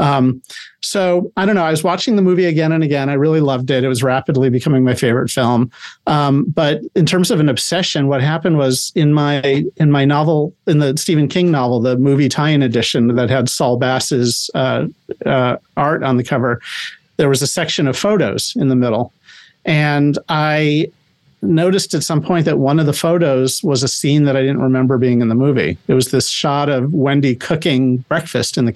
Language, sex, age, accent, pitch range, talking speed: English, male, 50-69, American, 130-160 Hz, 205 wpm